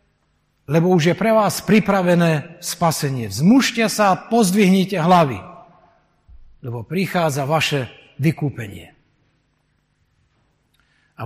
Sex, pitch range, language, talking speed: male, 145-195 Hz, Slovak, 85 wpm